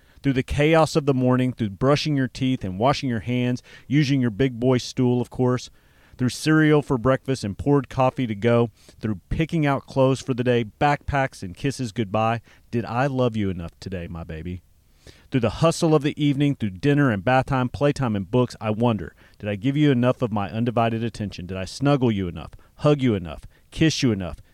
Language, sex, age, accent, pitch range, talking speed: English, male, 40-59, American, 100-135 Hz, 210 wpm